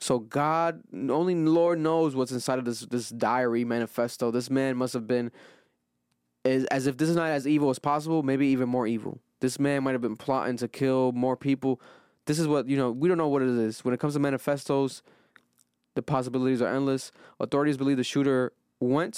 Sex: male